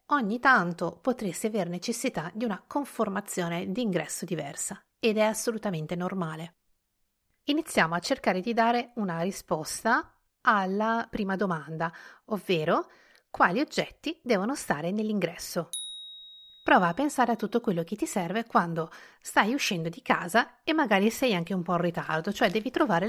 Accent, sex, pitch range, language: native, female, 170-225 Hz, Italian